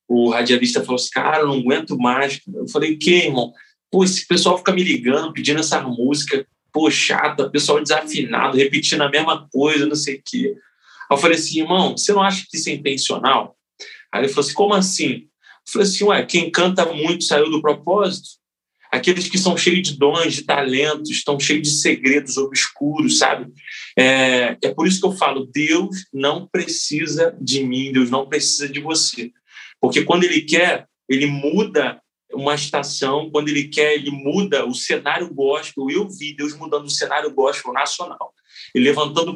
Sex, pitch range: male, 140-175 Hz